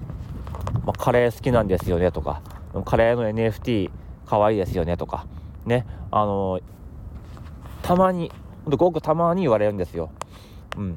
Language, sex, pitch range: Japanese, male, 90-125 Hz